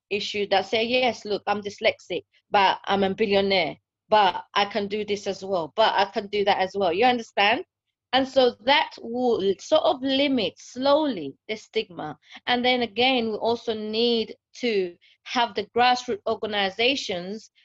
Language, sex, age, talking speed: English, female, 30-49, 165 wpm